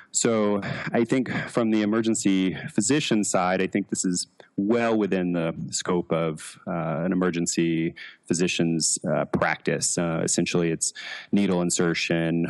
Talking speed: 135 wpm